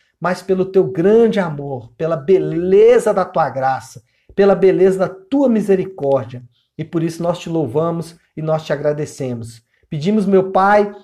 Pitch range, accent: 170-220 Hz, Brazilian